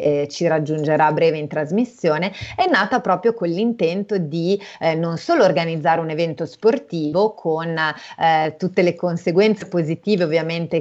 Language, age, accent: Italian, 30-49, native